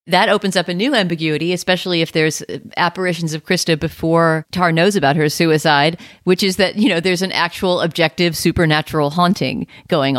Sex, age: female, 40-59